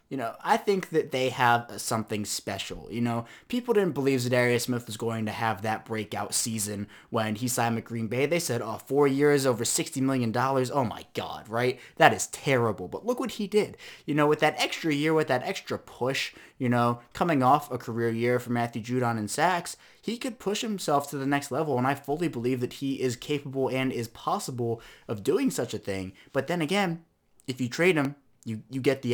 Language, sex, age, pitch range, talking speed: English, male, 20-39, 115-150 Hz, 215 wpm